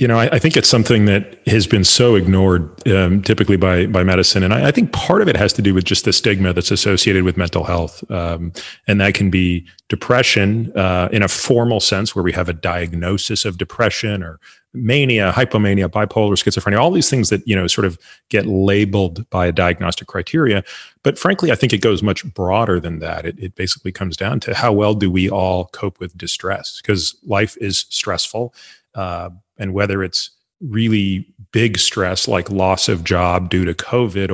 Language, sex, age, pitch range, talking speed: English, male, 30-49, 90-110 Hz, 200 wpm